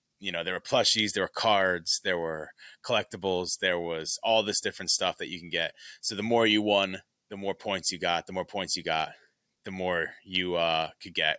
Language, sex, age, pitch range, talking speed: English, male, 20-39, 95-115 Hz, 220 wpm